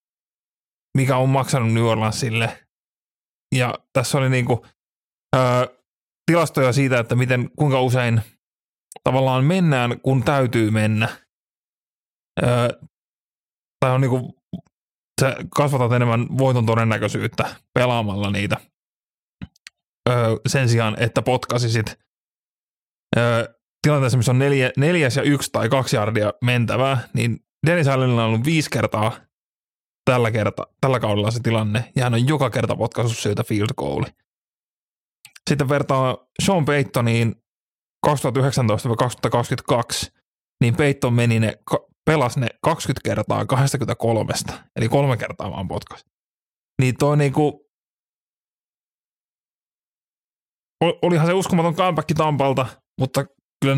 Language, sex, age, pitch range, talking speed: Finnish, male, 30-49, 115-140 Hz, 110 wpm